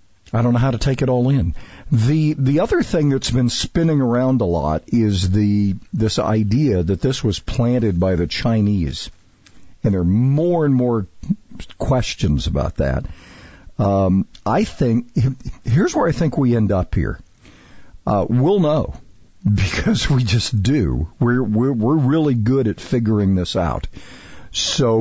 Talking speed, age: 160 wpm, 50-69